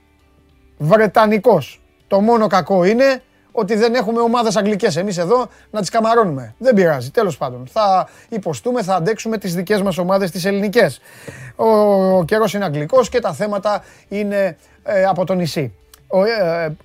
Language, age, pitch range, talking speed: Greek, 20-39, 155-210 Hz, 155 wpm